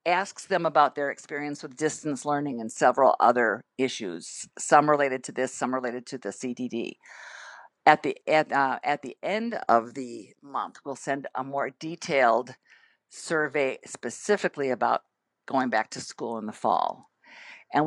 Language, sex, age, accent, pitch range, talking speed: English, female, 50-69, American, 135-160 Hz, 155 wpm